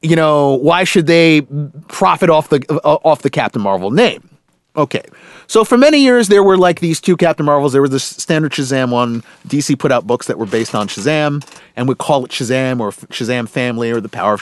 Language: English